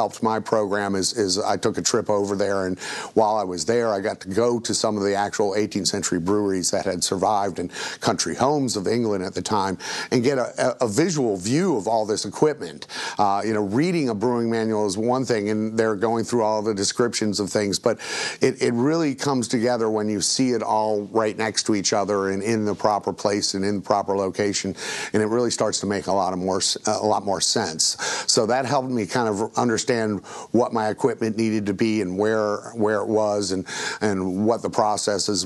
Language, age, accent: English, 50-69, American